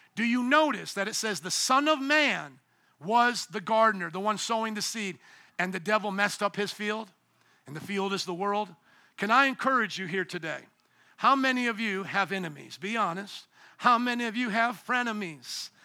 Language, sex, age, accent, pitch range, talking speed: English, male, 50-69, American, 195-250 Hz, 195 wpm